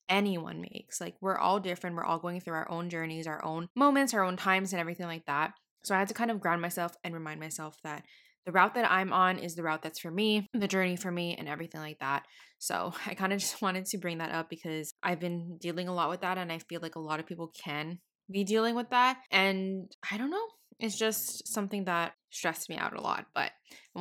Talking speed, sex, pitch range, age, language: 250 wpm, female, 165-195 Hz, 20-39, English